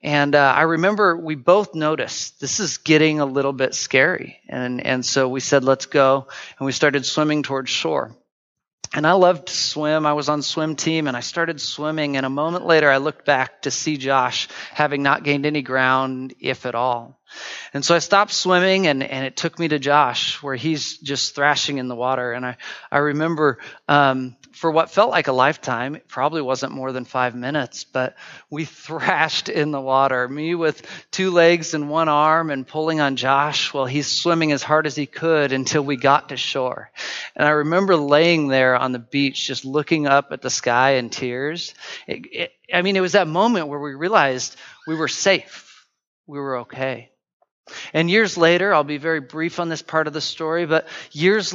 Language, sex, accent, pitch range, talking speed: English, male, American, 135-160 Hz, 205 wpm